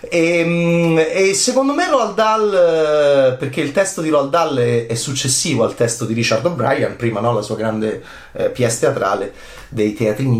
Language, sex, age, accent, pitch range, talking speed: Italian, male, 30-49, native, 125-170 Hz, 175 wpm